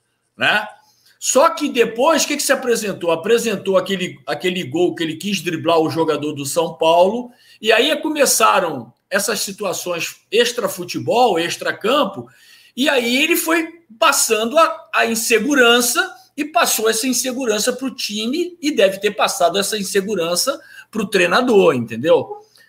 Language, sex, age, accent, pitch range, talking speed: Portuguese, male, 50-69, Brazilian, 185-295 Hz, 140 wpm